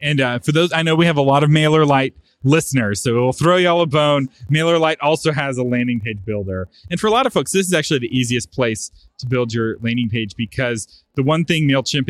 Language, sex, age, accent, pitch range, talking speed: English, male, 30-49, American, 100-135 Hz, 240 wpm